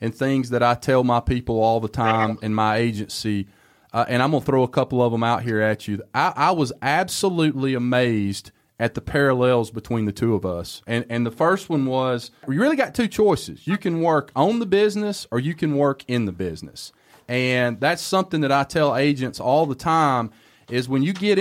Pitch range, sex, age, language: 120-155 Hz, male, 30-49, English